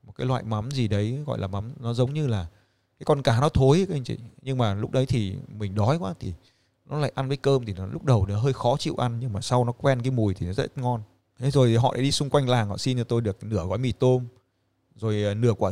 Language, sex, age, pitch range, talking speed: Vietnamese, male, 20-39, 105-130 Hz, 285 wpm